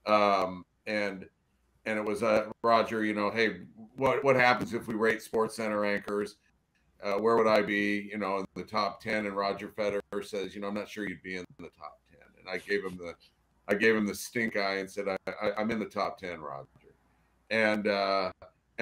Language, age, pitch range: English, 40-59, 100-120 Hz